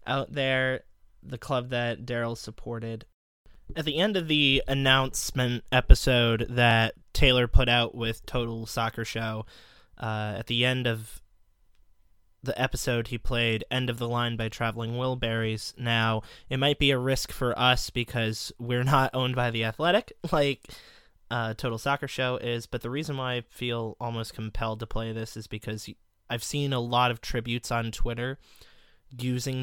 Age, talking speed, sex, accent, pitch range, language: 20-39, 165 wpm, male, American, 110-130 Hz, English